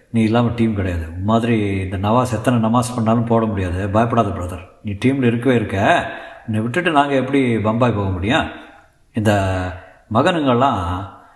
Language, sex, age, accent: Tamil, male, 50-69, native